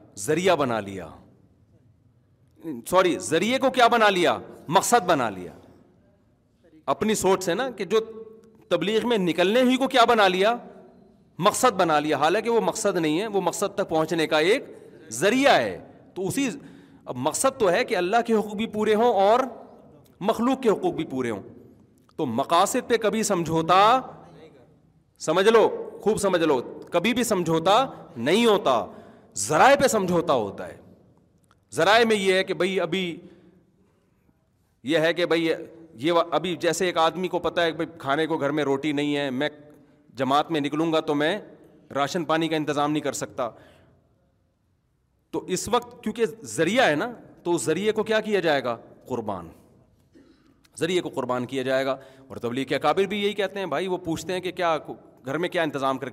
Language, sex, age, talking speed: Urdu, male, 40-59, 175 wpm